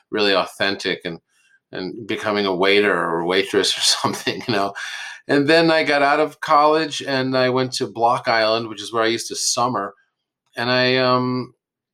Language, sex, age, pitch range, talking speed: English, male, 40-59, 120-150 Hz, 180 wpm